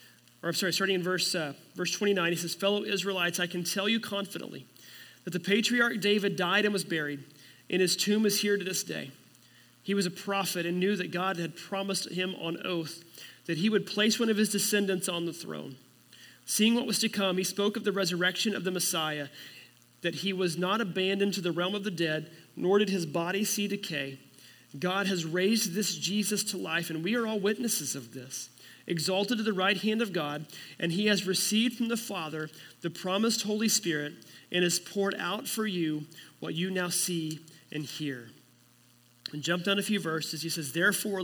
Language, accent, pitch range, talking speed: English, American, 155-200 Hz, 205 wpm